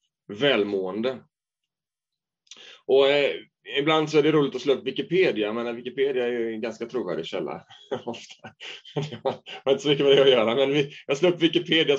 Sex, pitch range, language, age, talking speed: male, 135-180 Hz, Swedish, 30-49, 170 wpm